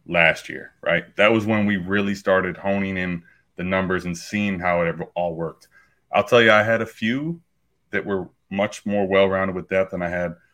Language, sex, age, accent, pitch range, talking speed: English, male, 20-39, American, 95-115 Hz, 205 wpm